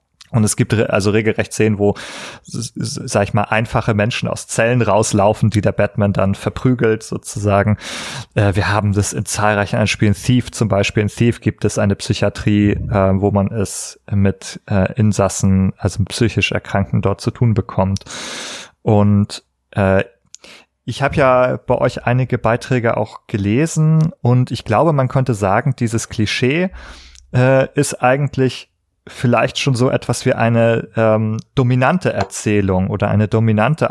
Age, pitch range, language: 30-49, 100-120 Hz, German